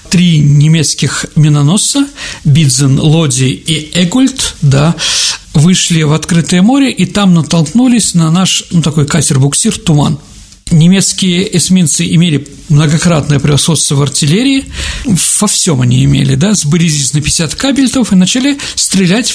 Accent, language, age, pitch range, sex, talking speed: native, Russian, 50-69, 150-195 Hz, male, 125 wpm